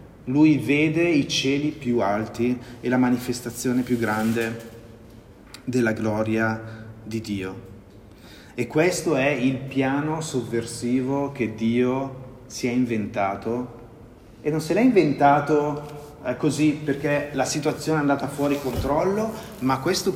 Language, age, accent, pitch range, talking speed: Italian, 30-49, native, 110-140 Hz, 120 wpm